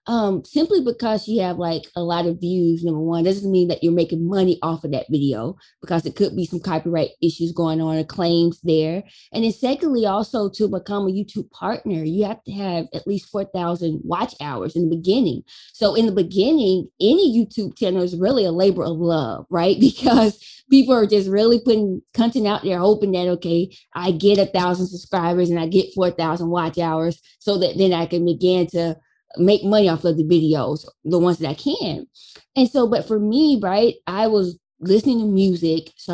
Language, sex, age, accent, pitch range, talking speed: English, female, 20-39, American, 170-215 Hz, 205 wpm